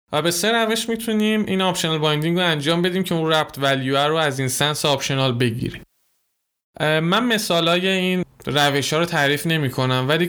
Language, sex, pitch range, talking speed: Persian, male, 135-170 Hz, 180 wpm